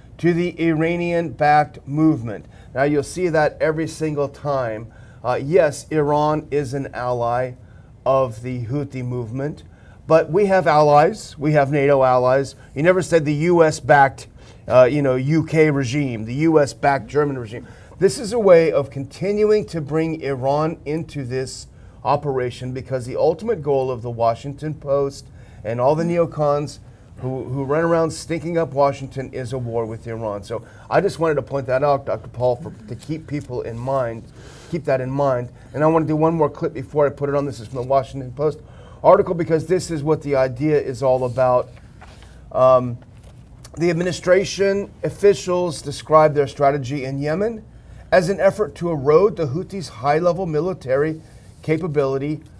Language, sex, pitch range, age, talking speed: English, male, 125-160 Hz, 40-59, 170 wpm